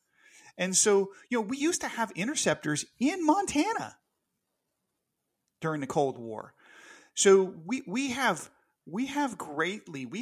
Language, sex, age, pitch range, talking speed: English, male, 40-59, 130-180 Hz, 135 wpm